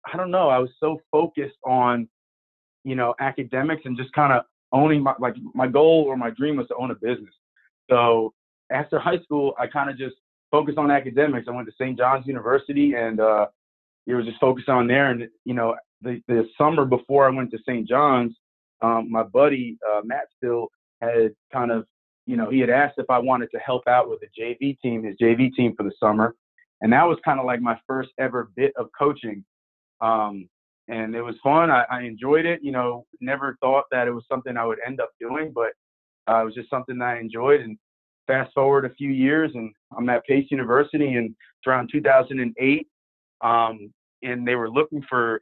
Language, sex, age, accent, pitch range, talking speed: English, male, 30-49, American, 115-140 Hz, 210 wpm